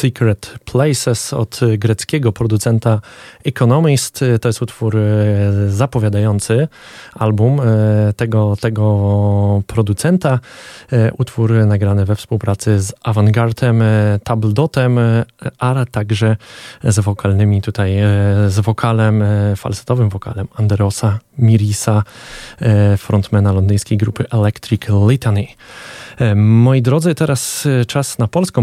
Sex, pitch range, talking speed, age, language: male, 105-120 Hz, 90 wpm, 20-39, Polish